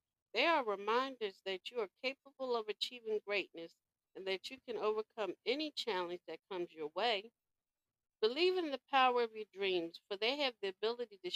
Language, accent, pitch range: English, American, 210-310 Hz